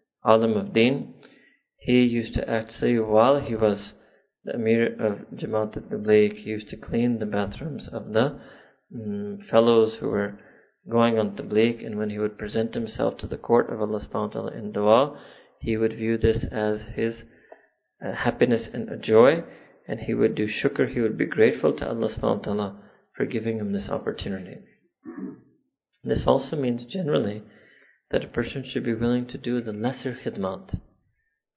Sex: male